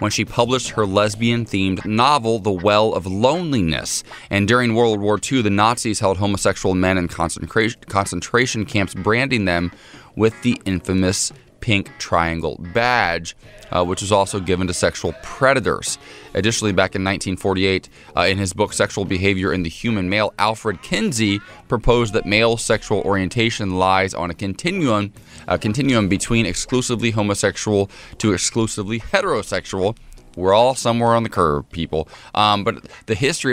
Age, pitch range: 20-39, 95-115 Hz